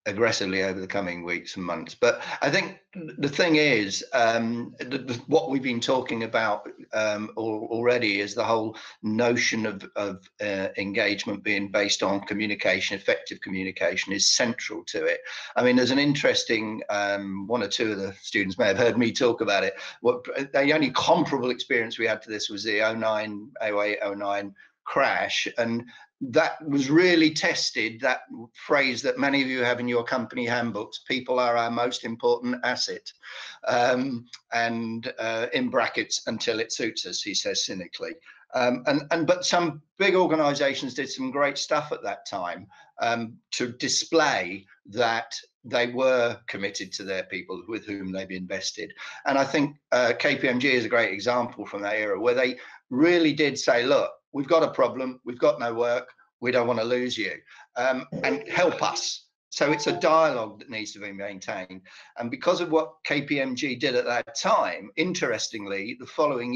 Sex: male